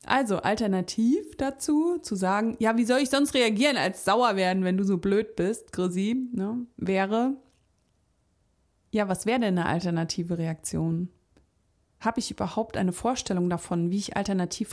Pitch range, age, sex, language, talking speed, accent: 180-240 Hz, 30-49, female, German, 155 wpm, German